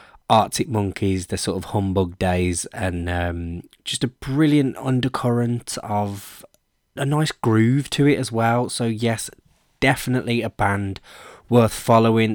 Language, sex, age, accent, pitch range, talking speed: English, male, 20-39, British, 100-130 Hz, 135 wpm